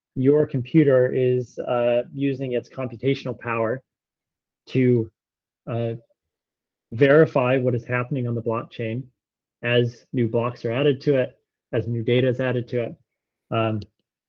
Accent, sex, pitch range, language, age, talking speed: American, male, 115-135 Hz, English, 30-49, 135 wpm